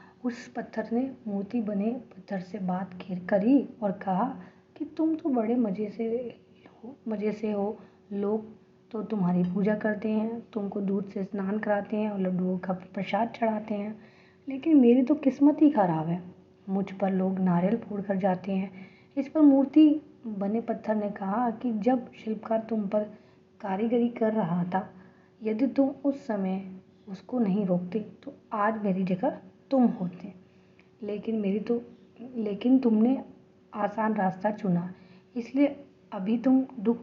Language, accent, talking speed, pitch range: Hindi, native, 155 wpm, 190-235 Hz